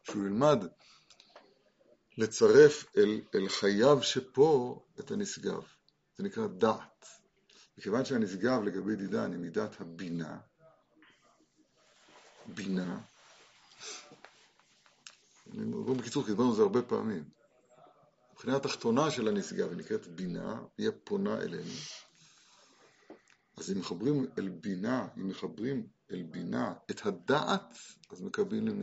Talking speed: 105 wpm